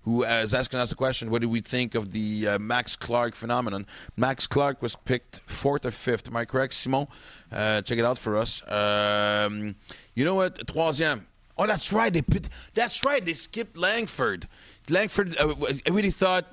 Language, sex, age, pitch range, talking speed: English, male, 30-49, 110-145 Hz, 190 wpm